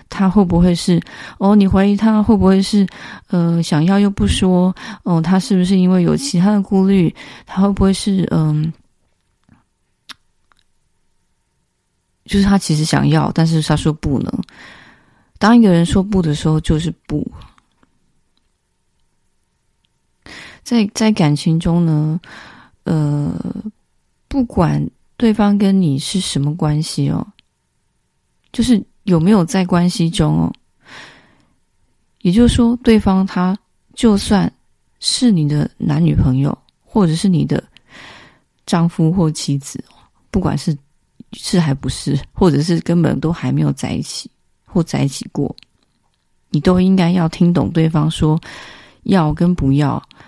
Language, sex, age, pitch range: Chinese, female, 30-49, 155-195 Hz